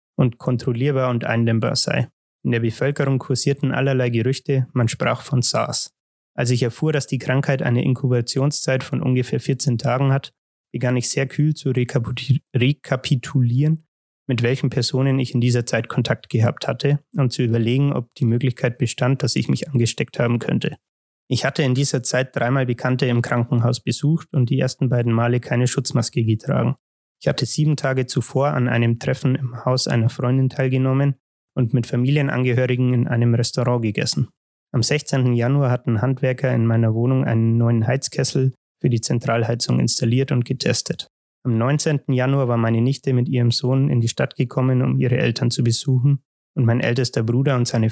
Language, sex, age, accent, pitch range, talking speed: German, male, 20-39, German, 120-135 Hz, 170 wpm